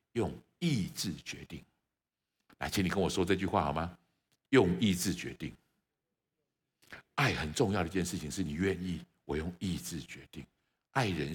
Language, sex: Chinese, male